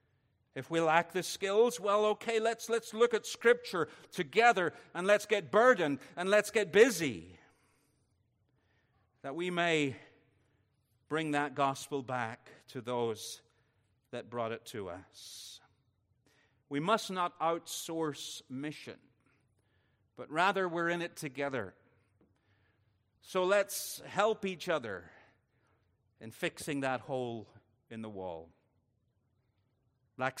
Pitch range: 115-165 Hz